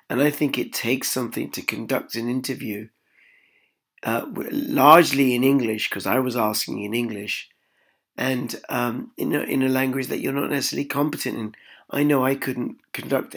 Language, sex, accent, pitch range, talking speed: English, male, British, 120-145 Hz, 165 wpm